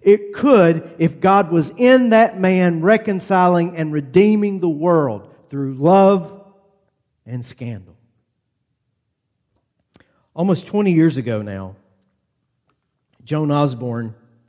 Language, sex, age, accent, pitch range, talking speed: English, male, 50-69, American, 120-175 Hz, 100 wpm